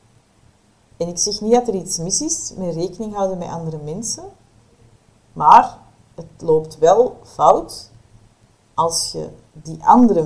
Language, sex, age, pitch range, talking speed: Dutch, female, 30-49, 115-180 Hz, 140 wpm